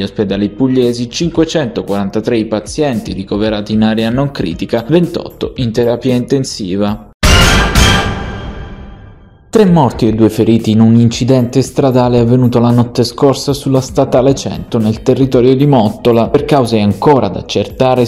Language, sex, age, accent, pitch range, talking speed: Italian, male, 20-39, native, 110-145 Hz, 130 wpm